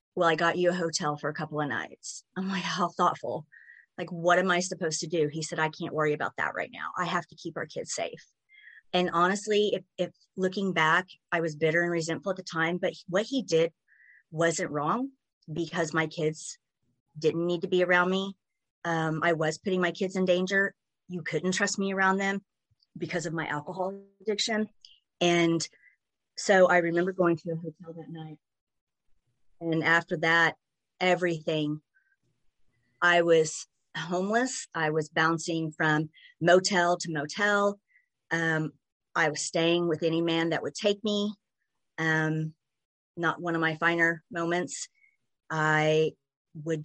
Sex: female